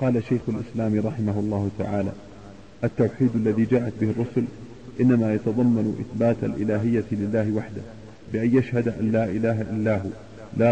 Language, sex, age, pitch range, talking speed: Arabic, male, 50-69, 105-115 Hz, 135 wpm